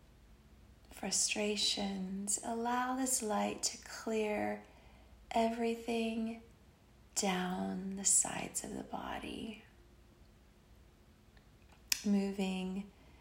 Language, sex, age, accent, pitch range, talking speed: English, female, 40-59, American, 195-230 Hz, 65 wpm